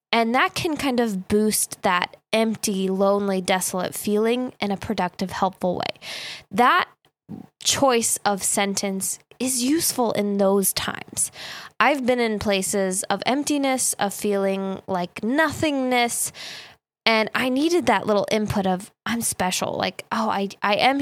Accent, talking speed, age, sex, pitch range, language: American, 140 wpm, 10-29, female, 195-245 Hz, English